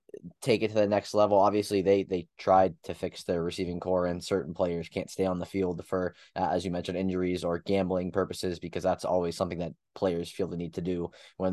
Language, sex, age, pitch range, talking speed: English, male, 20-39, 90-105 Hz, 230 wpm